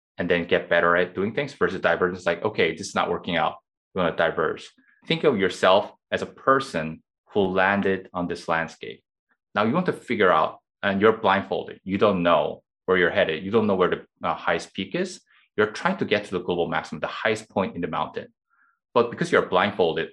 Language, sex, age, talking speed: English, male, 20-39, 220 wpm